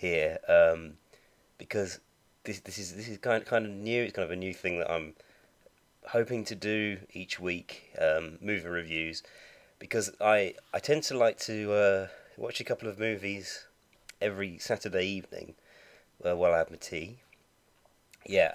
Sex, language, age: male, English, 30-49